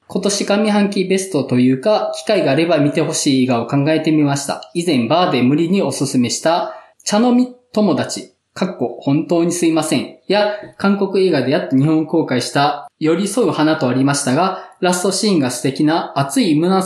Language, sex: Japanese, male